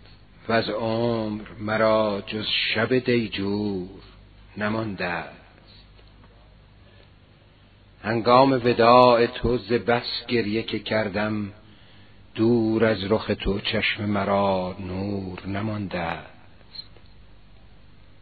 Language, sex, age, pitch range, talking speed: Persian, male, 50-69, 95-110 Hz, 80 wpm